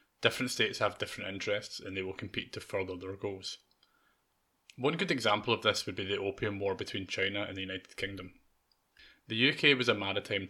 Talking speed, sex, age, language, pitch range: 195 wpm, male, 20-39, English, 95-105 Hz